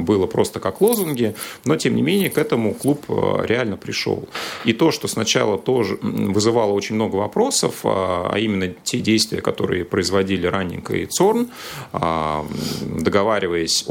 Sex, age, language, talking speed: male, 30-49, Russian, 140 wpm